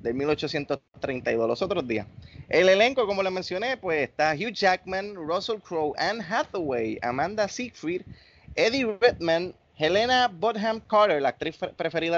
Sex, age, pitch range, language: male, 20-39, 140-190 Hz, Spanish